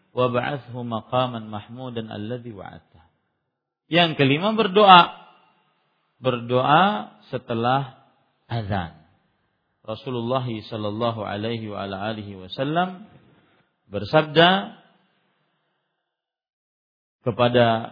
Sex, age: male, 50-69